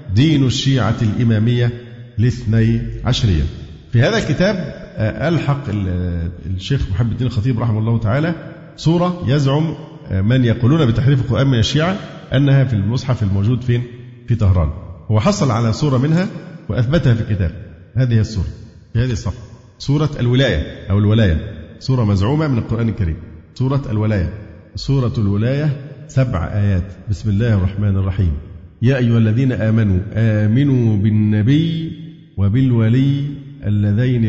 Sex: male